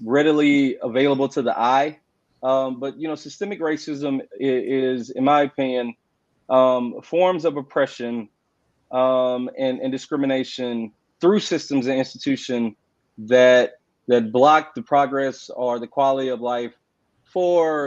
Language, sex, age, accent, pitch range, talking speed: English, male, 30-49, American, 125-145 Hz, 130 wpm